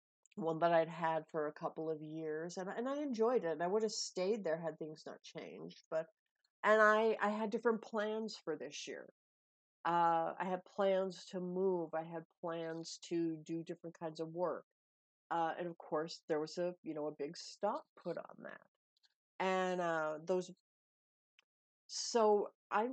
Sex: female